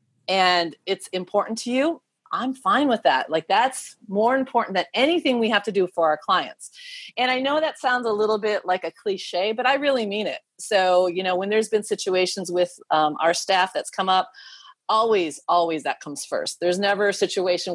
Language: English